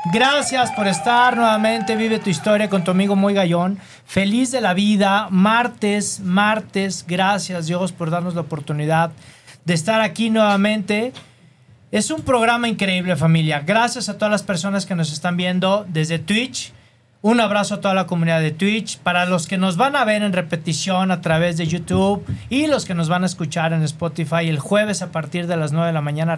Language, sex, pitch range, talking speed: Spanish, male, 165-205 Hz, 190 wpm